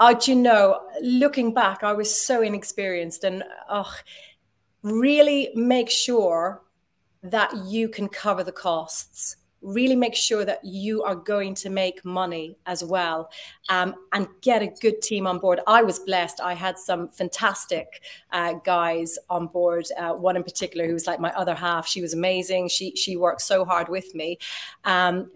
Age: 30-49